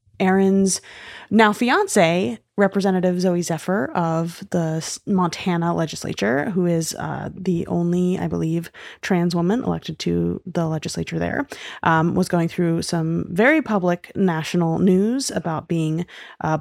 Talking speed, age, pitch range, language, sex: 130 wpm, 20-39, 170-230 Hz, English, female